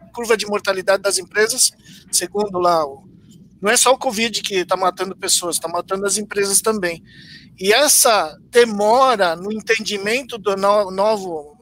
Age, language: 50-69, Portuguese